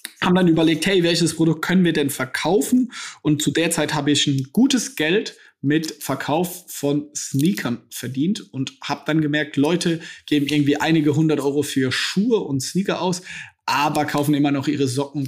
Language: German